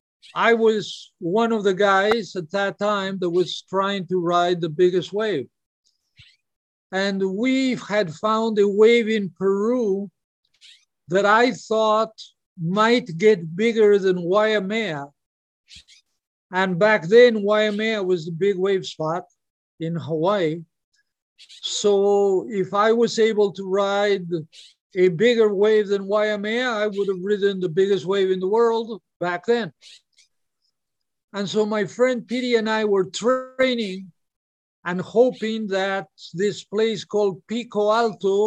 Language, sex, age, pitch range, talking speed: English, male, 60-79, 185-220 Hz, 135 wpm